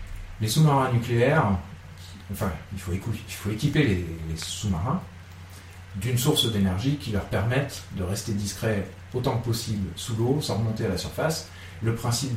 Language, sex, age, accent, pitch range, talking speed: French, male, 40-59, French, 90-115 Hz, 165 wpm